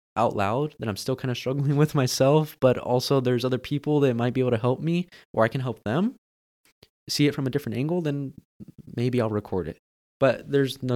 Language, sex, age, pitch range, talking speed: English, male, 20-39, 110-140 Hz, 220 wpm